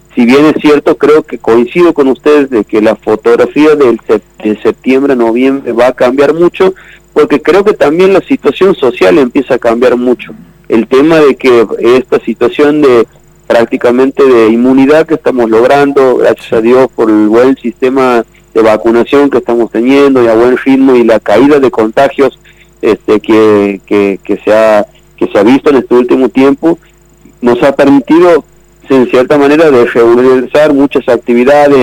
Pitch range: 115-145 Hz